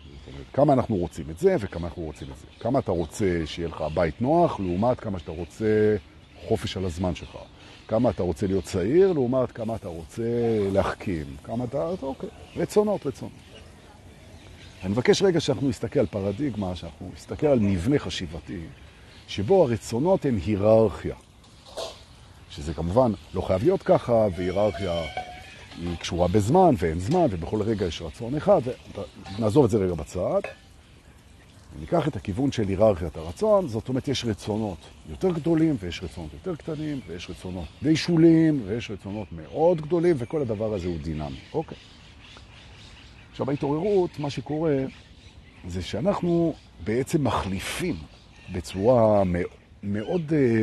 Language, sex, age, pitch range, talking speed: Hebrew, male, 50-69, 90-130 Hz, 95 wpm